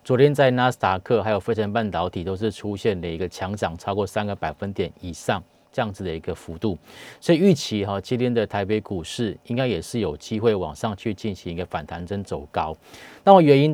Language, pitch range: Chinese, 95-130 Hz